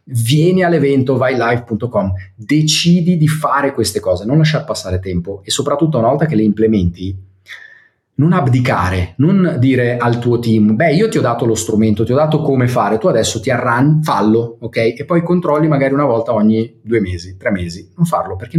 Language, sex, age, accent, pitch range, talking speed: Italian, male, 30-49, native, 110-155 Hz, 190 wpm